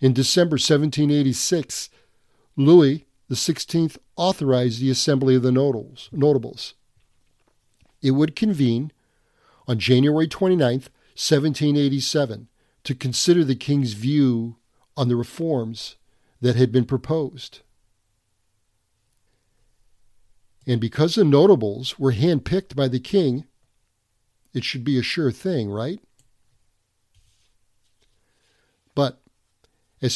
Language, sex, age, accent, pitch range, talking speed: English, male, 50-69, American, 115-145 Hz, 95 wpm